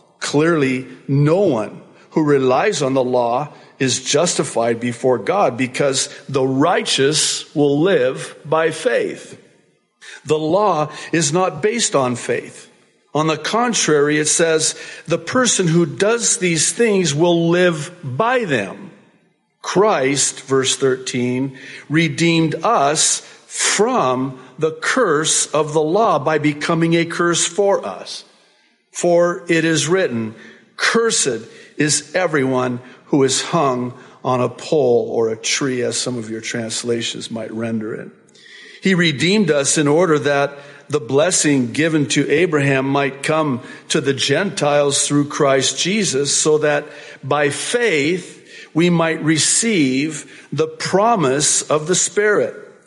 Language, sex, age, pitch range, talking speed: English, male, 50-69, 135-170 Hz, 130 wpm